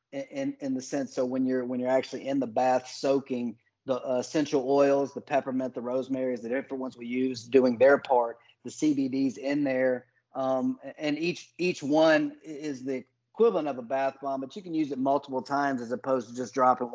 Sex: male